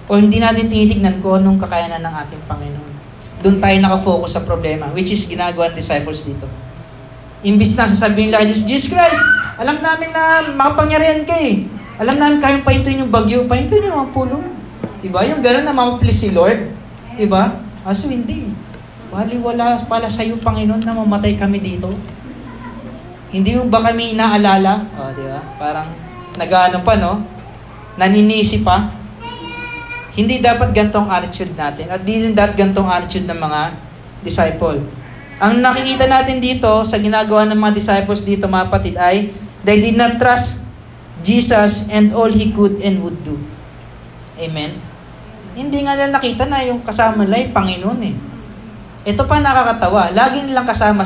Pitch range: 155-230 Hz